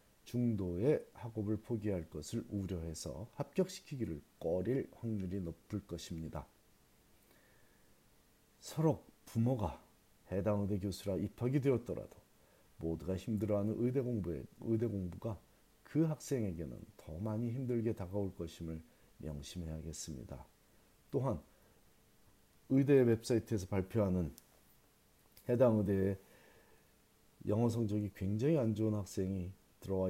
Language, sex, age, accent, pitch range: Korean, male, 40-59, native, 90-115 Hz